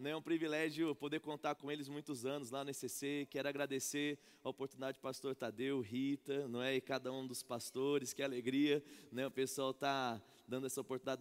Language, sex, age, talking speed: Portuguese, male, 20-39, 195 wpm